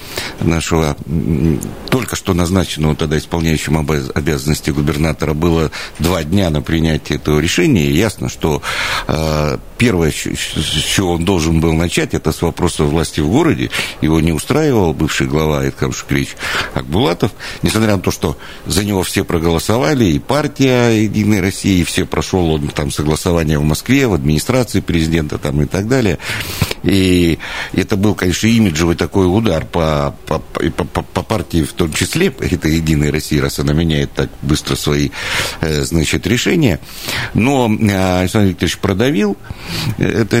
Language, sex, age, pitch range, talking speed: Russian, male, 60-79, 80-105 Hz, 140 wpm